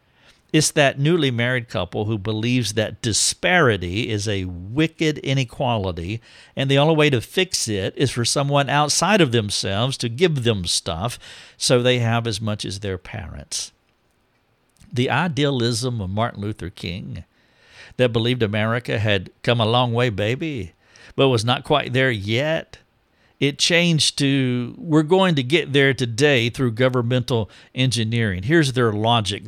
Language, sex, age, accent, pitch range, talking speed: English, male, 50-69, American, 105-140 Hz, 150 wpm